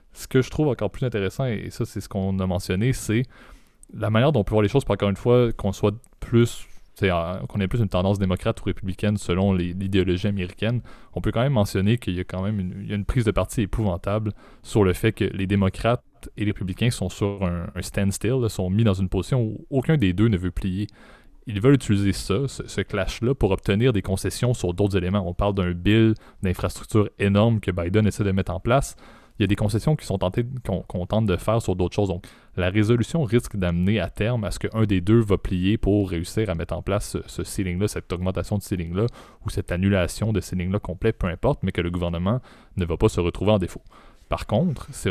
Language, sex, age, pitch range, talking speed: French, male, 20-39, 95-115 Hz, 245 wpm